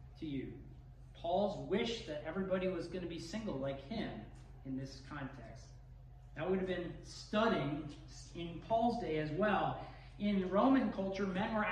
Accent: American